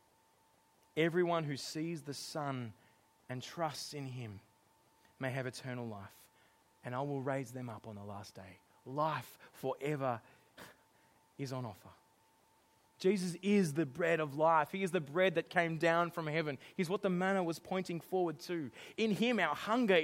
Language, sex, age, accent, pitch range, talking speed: English, male, 20-39, Australian, 130-190 Hz, 165 wpm